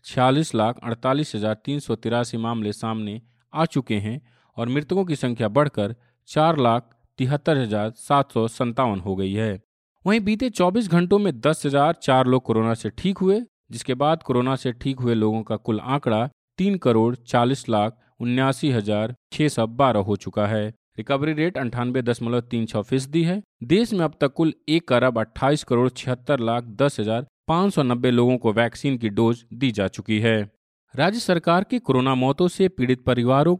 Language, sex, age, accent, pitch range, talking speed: Hindi, male, 40-59, native, 110-145 Hz, 150 wpm